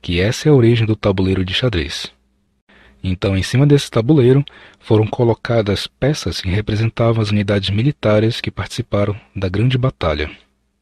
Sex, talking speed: male, 150 wpm